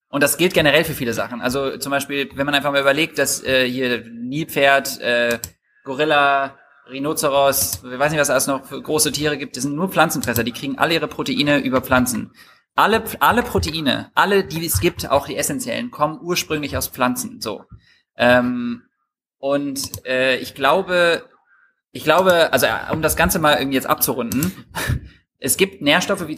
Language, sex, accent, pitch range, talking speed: German, male, German, 125-150 Hz, 175 wpm